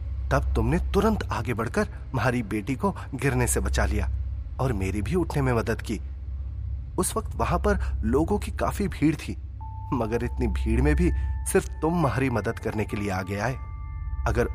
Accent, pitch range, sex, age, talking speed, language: native, 80-115 Hz, male, 30-49, 105 wpm, Hindi